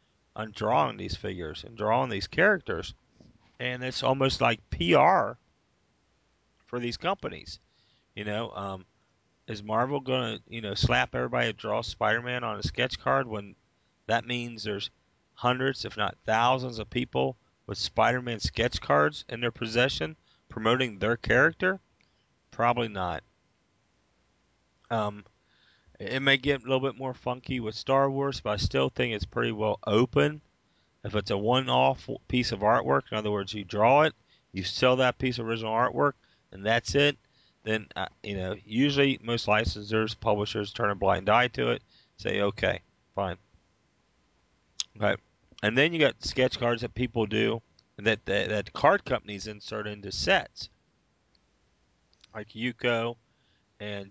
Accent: American